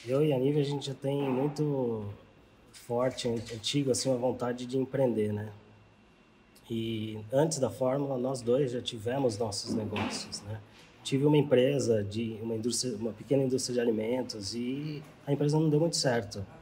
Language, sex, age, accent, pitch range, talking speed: Portuguese, male, 20-39, Brazilian, 115-145 Hz, 165 wpm